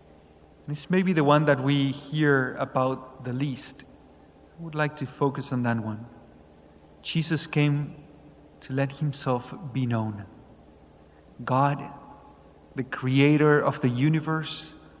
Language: English